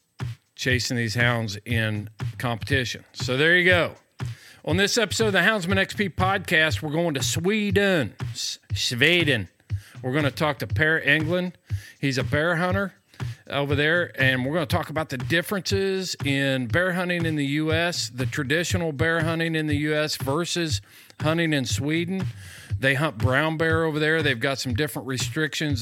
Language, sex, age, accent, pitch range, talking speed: English, male, 50-69, American, 120-155 Hz, 165 wpm